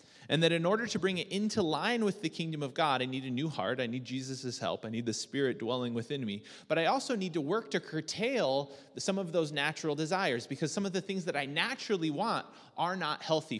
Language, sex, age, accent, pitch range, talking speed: English, male, 30-49, American, 135-175 Hz, 245 wpm